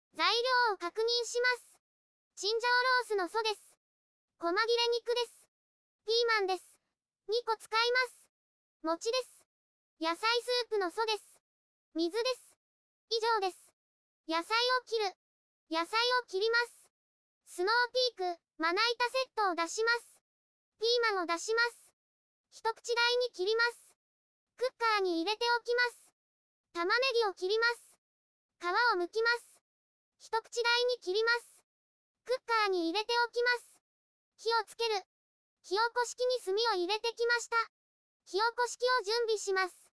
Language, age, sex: Japanese, 20-39, male